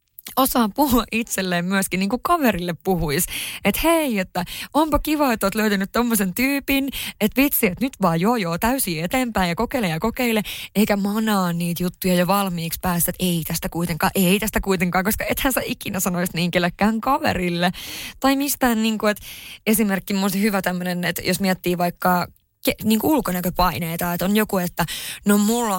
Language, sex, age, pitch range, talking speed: Finnish, female, 20-39, 180-220 Hz, 170 wpm